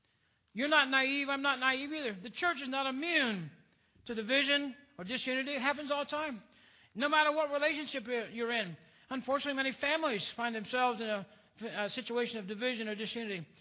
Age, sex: 60-79, male